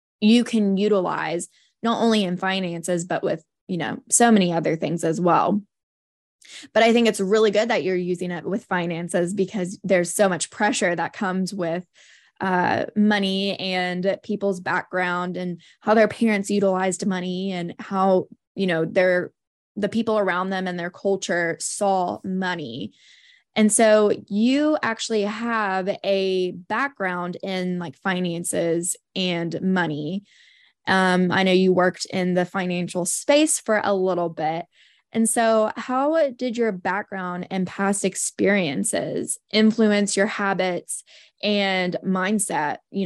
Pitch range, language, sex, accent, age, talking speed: 180-210 Hz, English, female, American, 10-29, 140 wpm